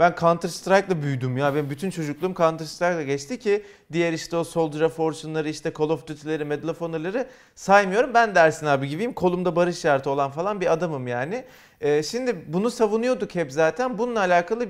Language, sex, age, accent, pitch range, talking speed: Turkish, male, 40-59, native, 160-215 Hz, 185 wpm